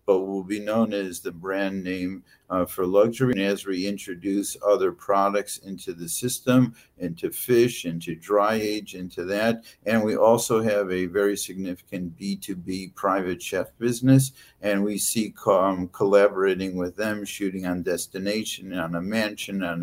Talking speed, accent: 155 wpm, American